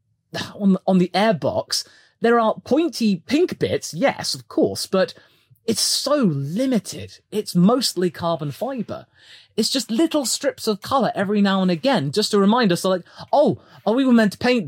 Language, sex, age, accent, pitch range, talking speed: English, male, 30-49, British, 185-250 Hz, 165 wpm